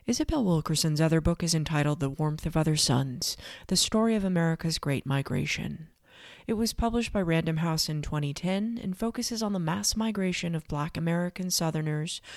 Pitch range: 155-205 Hz